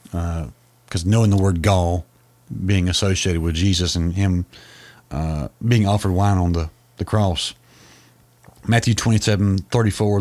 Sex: male